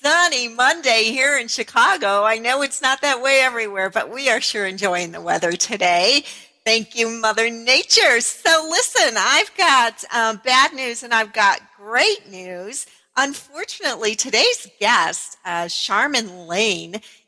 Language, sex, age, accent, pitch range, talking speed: English, female, 50-69, American, 200-275 Hz, 145 wpm